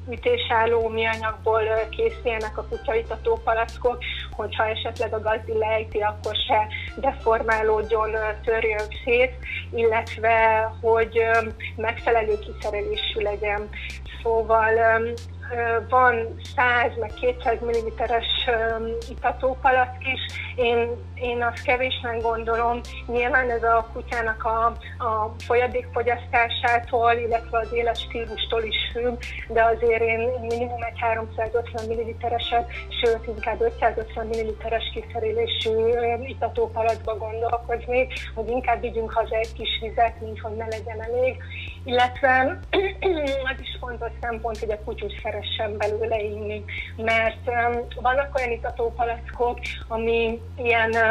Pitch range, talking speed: 225-245 Hz, 105 wpm